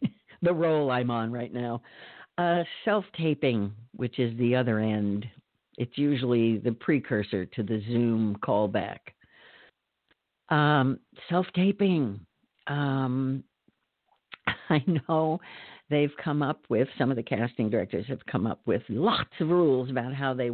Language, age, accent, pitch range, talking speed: English, 50-69, American, 115-150 Hz, 130 wpm